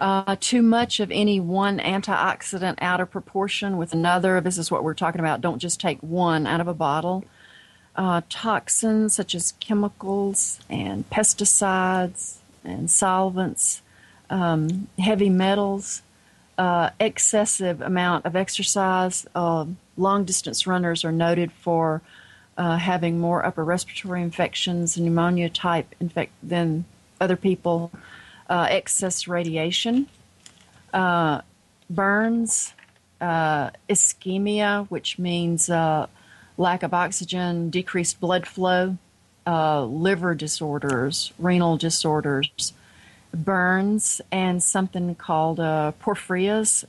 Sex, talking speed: female, 115 wpm